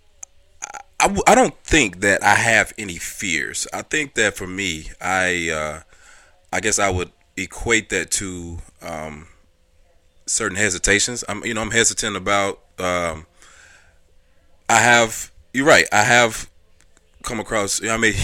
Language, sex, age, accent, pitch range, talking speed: English, male, 30-49, American, 85-100 Hz, 150 wpm